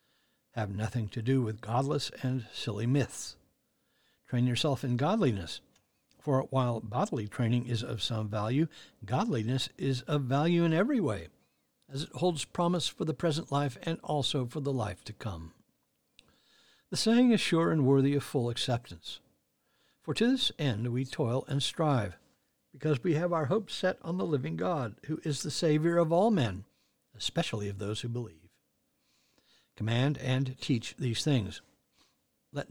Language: English